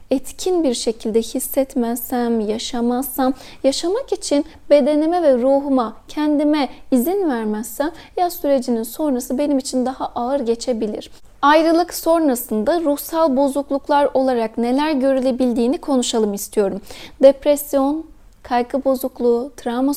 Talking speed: 100 wpm